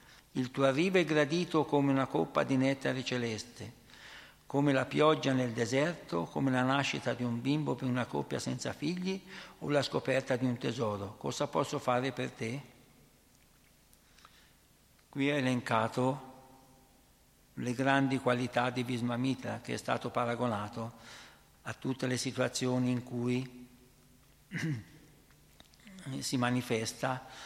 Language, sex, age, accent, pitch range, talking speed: Italian, male, 60-79, native, 120-145 Hz, 125 wpm